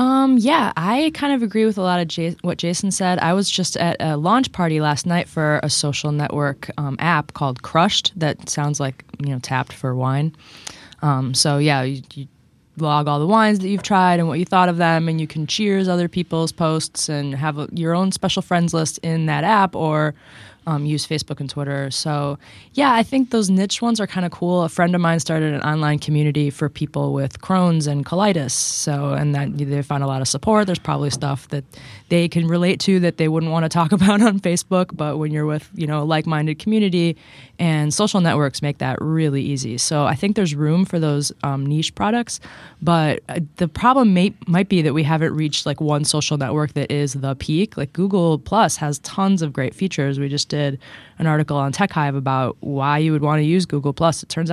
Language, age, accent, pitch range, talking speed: English, 20-39, American, 145-180 Hz, 220 wpm